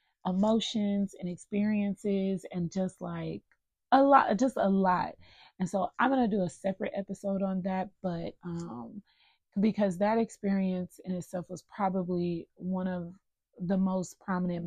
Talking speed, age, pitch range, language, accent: 145 wpm, 20-39, 180-205 Hz, English, American